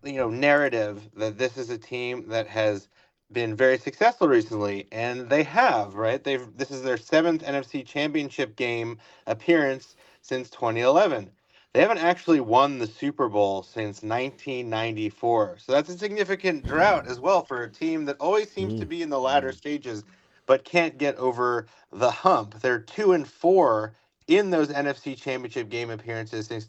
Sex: male